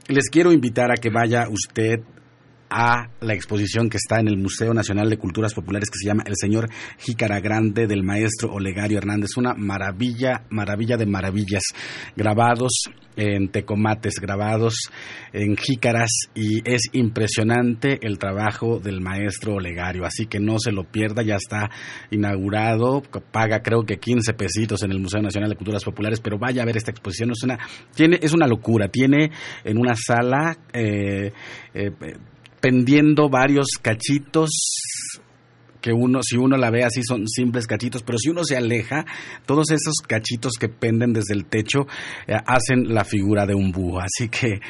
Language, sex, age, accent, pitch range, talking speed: Spanish, male, 40-59, Mexican, 105-125 Hz, 165 wpm